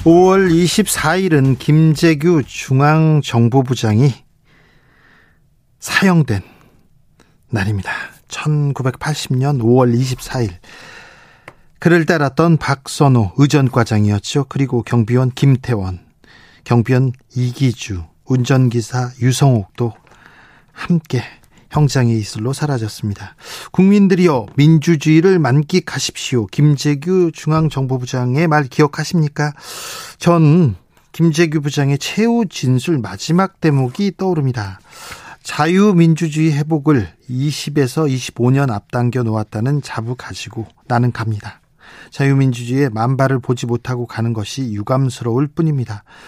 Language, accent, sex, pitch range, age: Korean, native, male, 120-155 Hz, 40-59